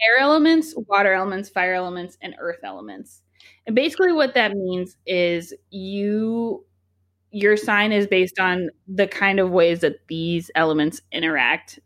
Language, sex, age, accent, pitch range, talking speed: English, female, 20-39, American, 170-215 Hz, 145 wpm